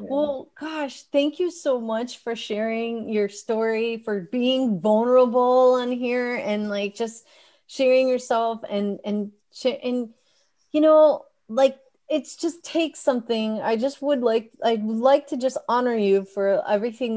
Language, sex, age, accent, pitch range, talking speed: English, female, 30-49, American, 205-260 Hz, 145 wpm